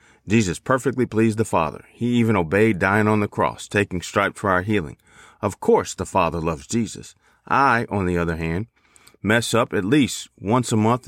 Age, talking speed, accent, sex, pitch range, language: 40-59, 190 wpm, American, male, 90-115 Hz, English